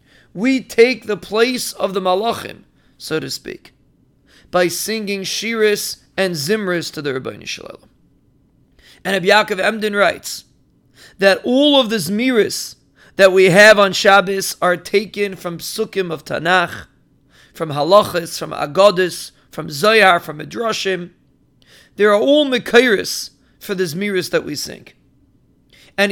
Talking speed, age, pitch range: 135 wpm, 40-59, 175-220 Hz